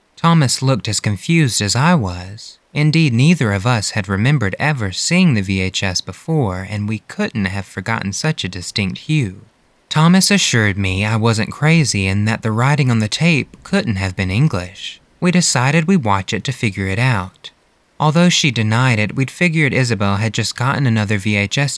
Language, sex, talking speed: English, male, 180 wpm